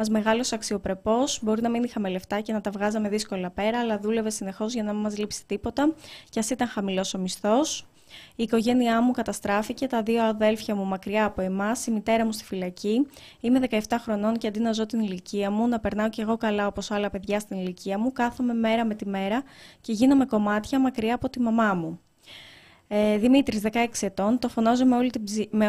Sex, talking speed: female, 210 wpm